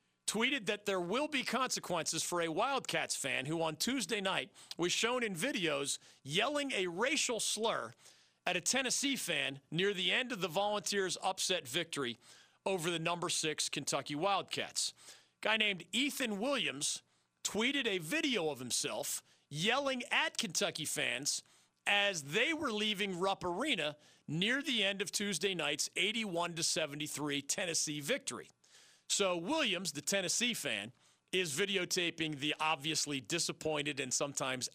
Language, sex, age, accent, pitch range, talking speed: English, male, 40-59, American, 150-215 Hz, 140 wpm